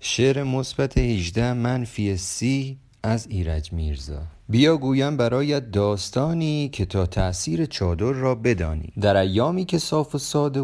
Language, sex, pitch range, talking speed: Persian, male, 100-145 Hz, 140 wpm